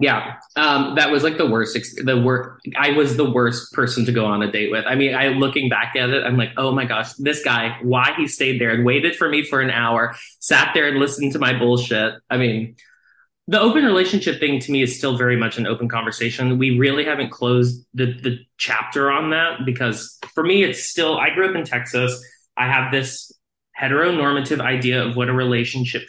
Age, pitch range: 20-39, 120-145 Hz